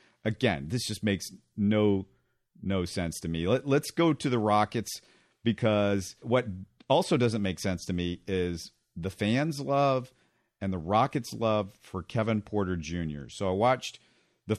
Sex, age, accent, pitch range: male, 50-69, American, 95-130 Hz